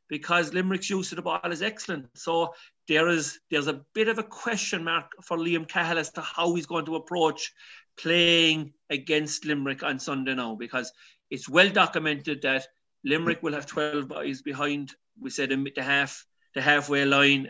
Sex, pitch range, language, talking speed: male, 140-175 Hz, English, 180 wpm